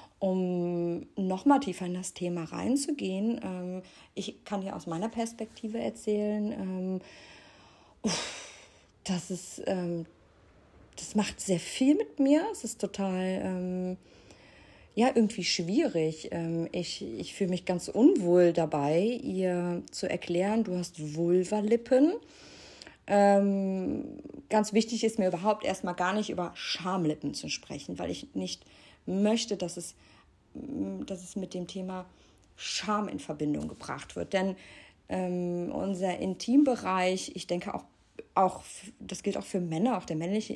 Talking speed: 140 wpm